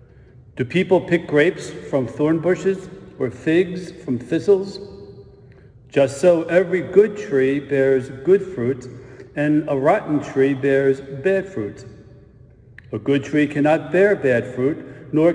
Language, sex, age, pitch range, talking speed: English, male, 60-79, 130-170 Hz, 135 wpm